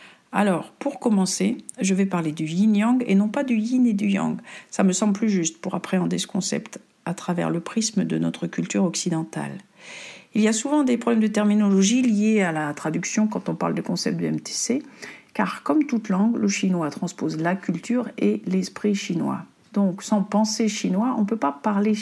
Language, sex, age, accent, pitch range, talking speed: French, female, 50-69, French, 190-240 Hz, 200 wpm